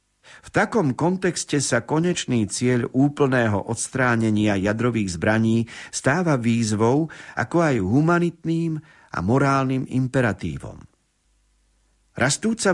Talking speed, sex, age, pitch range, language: 90 wpm, male, 50-69, 110-145 Hz, Slovak